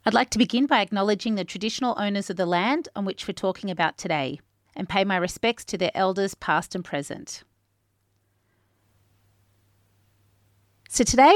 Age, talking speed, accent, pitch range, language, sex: 30-49, 160 wpm, Australian, 175-235 Hz, English, female